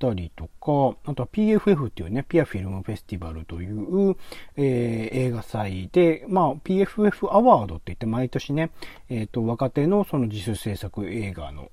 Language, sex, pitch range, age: Japanese, male, 95-150 Hz, 40-59